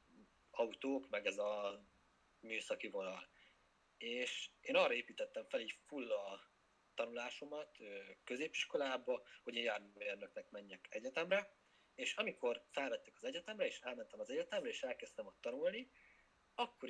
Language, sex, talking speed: Hungarian, male, 125 wpm